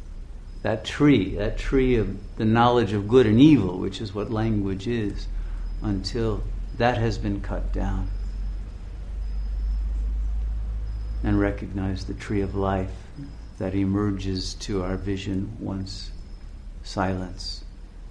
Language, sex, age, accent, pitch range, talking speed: English, male, 50-69, American, 80-100 Hz, 115 wpm